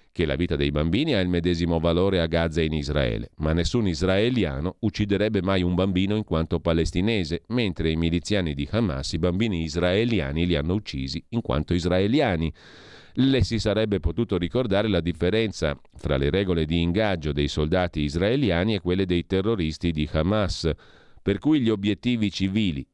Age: 40-59